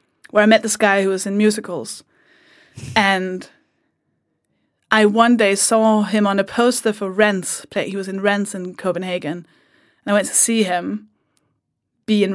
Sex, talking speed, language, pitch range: female, 170 wpm, English, 195-230 Hz